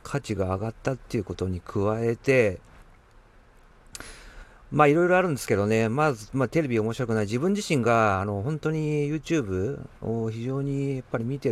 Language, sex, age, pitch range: Japanese, male, 50-69, 95-140 Hz